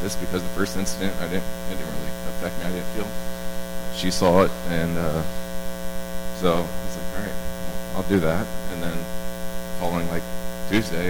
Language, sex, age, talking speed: English, male, 20-39, 180 wpm